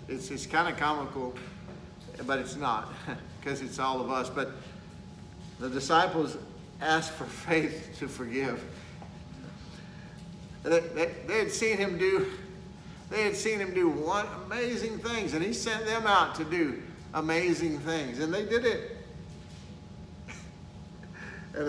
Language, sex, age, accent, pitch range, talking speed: English, male, 50-69, American, 145-190 Hz, 125 wpm